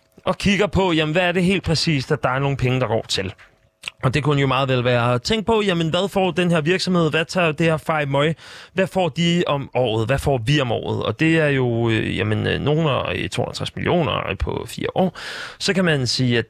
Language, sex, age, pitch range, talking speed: Danish, male, 30-49, 125-180 Hz, 235 wpm